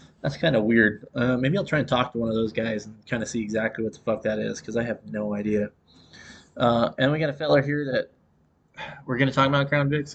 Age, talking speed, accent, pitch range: 20-39, 260 wpm, American, 110-140 Hz